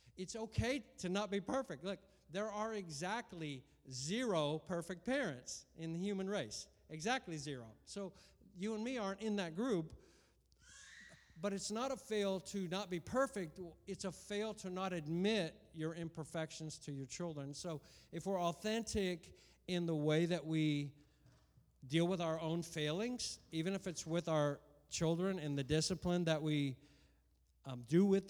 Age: 50-69